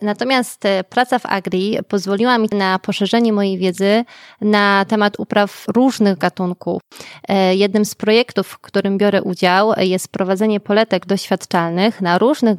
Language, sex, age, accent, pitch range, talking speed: Polish, female, 20-39, native, 195-225 Hz, 135 wpm